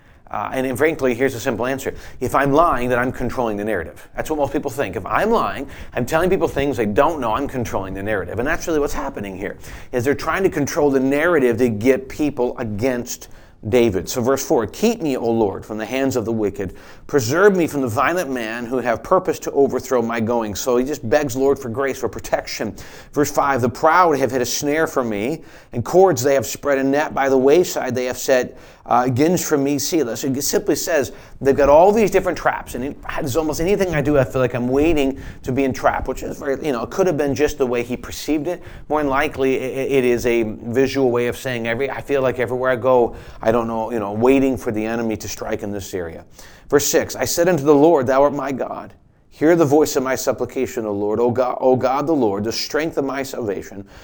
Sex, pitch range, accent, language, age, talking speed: male, 115-145 Hz, American, English, 40-59, 240 wpm